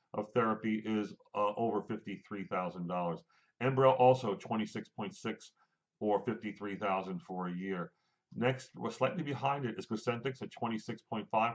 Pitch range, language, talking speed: 110-130 Hz, English, 120 wpm